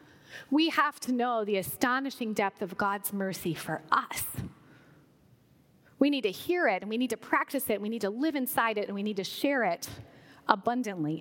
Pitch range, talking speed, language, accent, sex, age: 205-300 Hz, 200 wpm, English, American, female, 30-49